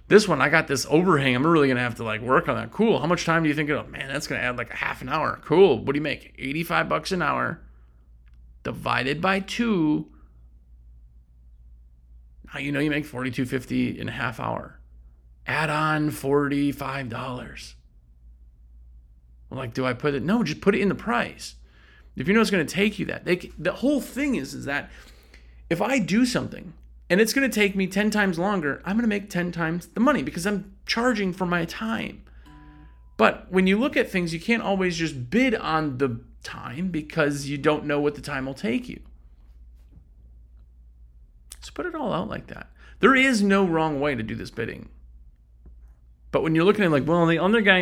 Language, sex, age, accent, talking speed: English, male, 30-49, American, 205 wpm